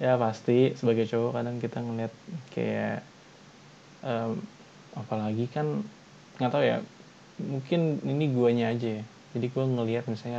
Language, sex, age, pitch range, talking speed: Indonesian, male, 20-39, 115-140 Hz, 135 wpm